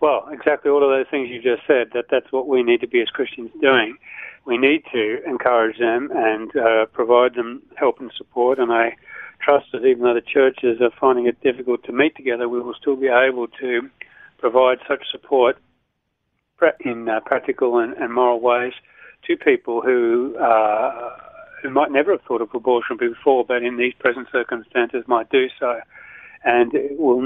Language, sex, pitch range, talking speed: English, male, 115-140 Hz, 185 wpm